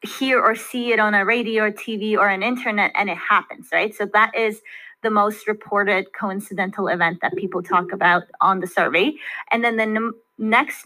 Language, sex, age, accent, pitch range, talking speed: English, female, 20-39, American, 200-230 Hz, 195 wpm